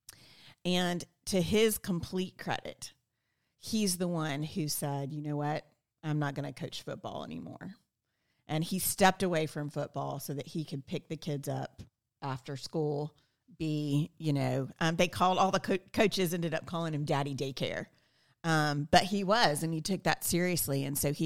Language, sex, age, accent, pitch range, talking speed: English, female, 40-59, American, 145-180 Hz, 180 wpm